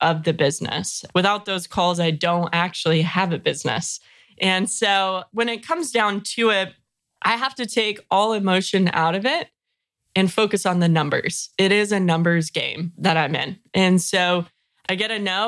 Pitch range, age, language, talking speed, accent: 180-215 Hz, 20-39, English, 185 wpm, American